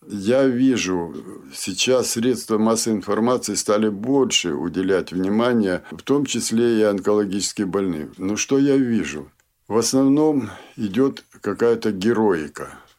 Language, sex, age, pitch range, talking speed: Russian, male, 60-79, 110-135 Hz, 115 wpm